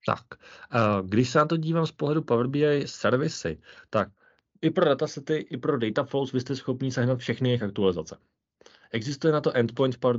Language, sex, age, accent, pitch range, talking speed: Czech, male, 30-49, native, 110-135 Hz, 185 wpm